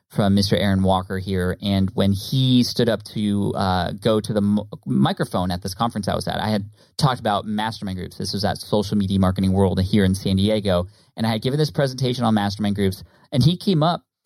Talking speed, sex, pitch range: 225 wpm, male, 95-115 Hz